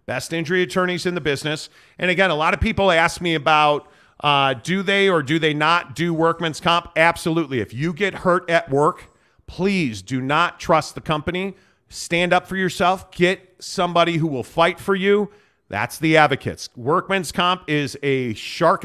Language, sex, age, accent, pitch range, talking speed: English, male, 40-59, American, 140-180 Hz, 180 wpm